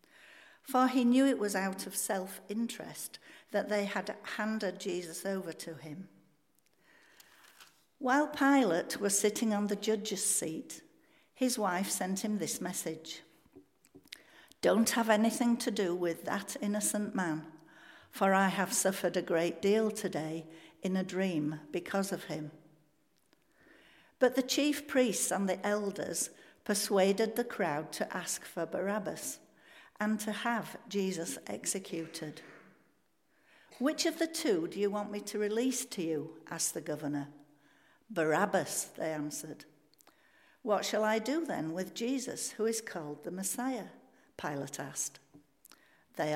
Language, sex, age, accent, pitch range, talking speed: English, female, 60-79, British, 165-225 Hz, 135 wpm